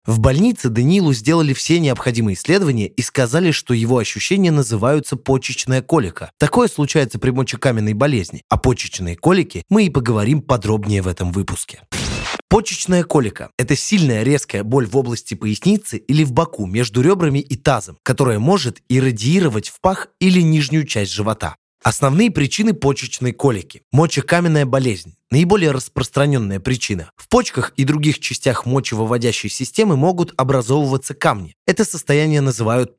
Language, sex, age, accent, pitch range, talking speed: Russian, male, 20-39, native, 120-160 Hz, 140 wpm